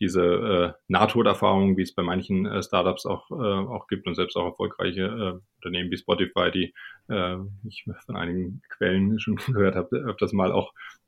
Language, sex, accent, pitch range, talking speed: German, male, German, 85-105 Hz, 185 wpm